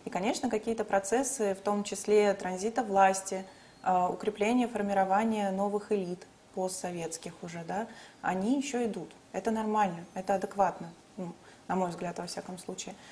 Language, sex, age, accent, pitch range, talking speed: Russian, female, 20-39, native, 195-230 Hz, 135 wpm